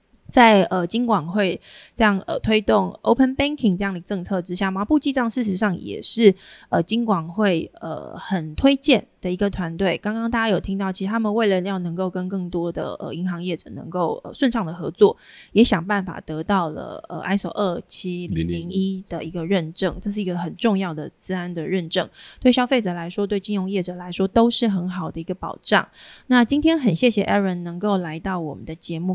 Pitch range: 175-215 Hz